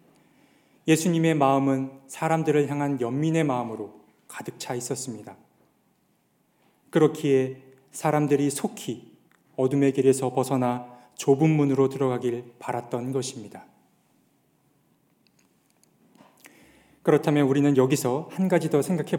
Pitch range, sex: 130-155 Hz, male